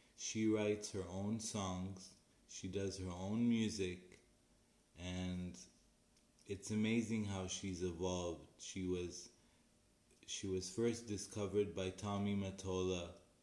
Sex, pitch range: male, 90-100 Hz